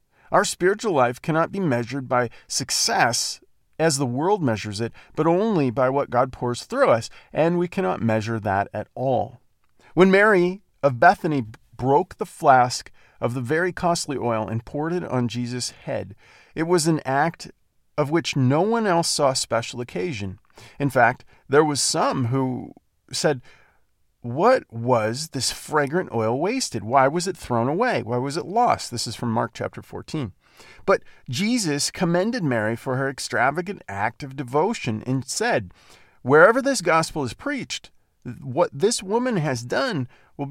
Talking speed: 160 wpm